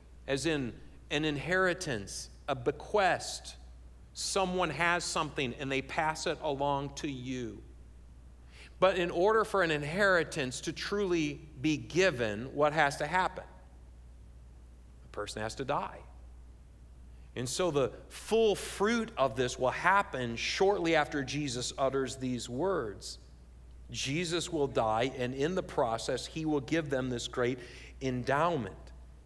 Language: English